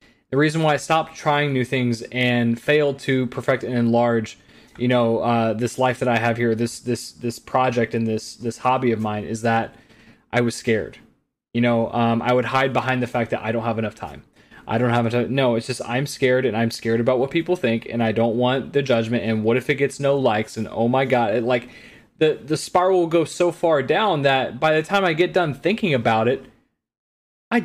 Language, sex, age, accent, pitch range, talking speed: English, male, 20-39, American, 120-145 Hz, 235 wpm